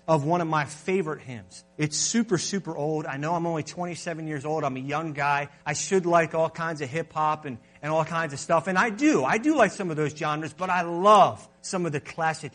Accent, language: American, English